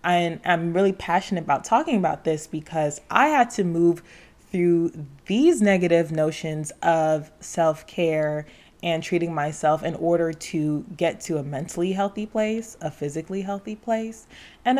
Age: 20-39